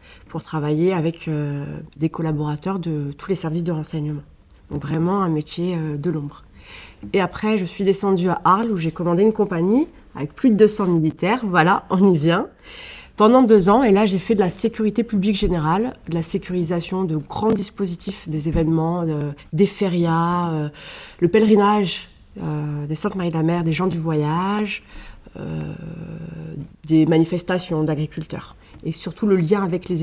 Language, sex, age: French, female, 30-49